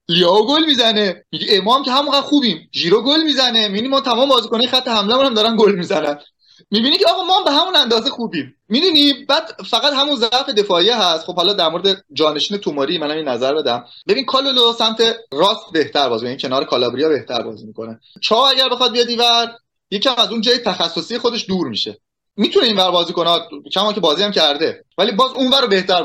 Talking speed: 195 wpm